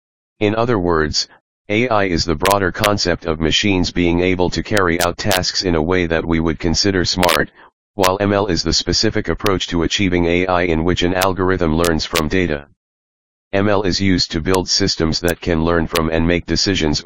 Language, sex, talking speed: English, male, 185 wpm